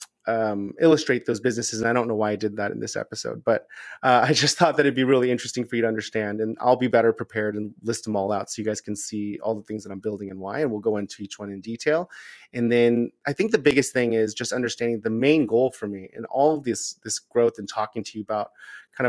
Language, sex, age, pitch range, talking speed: English, male, 30-49, 105-125 Hz, 275 wpm